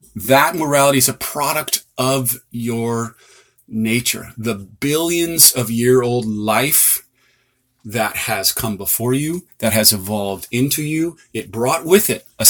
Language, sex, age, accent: English, male, 30-49, American